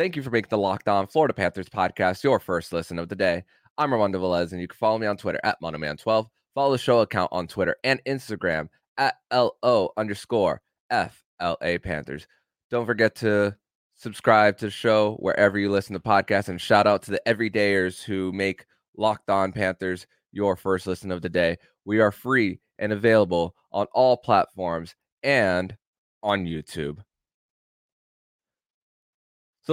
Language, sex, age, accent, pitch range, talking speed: English, male, 20-39, American, 100-125 Hz, 165 wpm